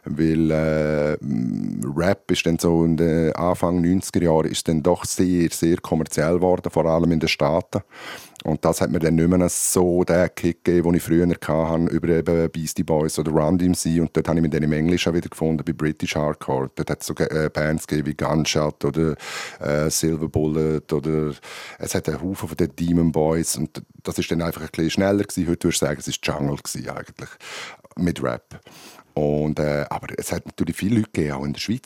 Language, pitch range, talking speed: German, 75-85 Hz, 195 wpm